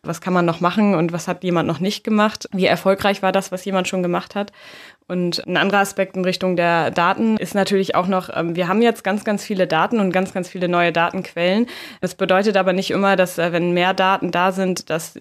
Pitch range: 170-195 Hz